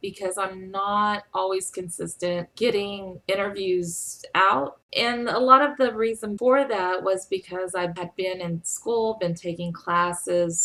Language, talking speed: English, 145 wpm